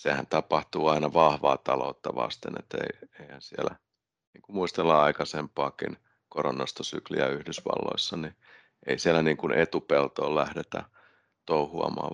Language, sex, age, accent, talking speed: Finnish, male, 30-49, native, 105 wpm